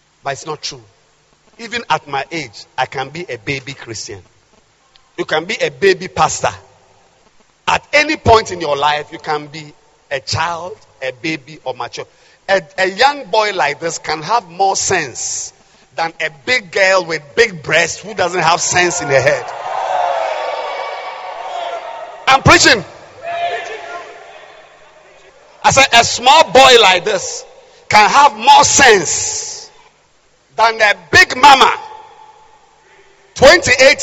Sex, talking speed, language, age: male, 135 wpm, English, 50-69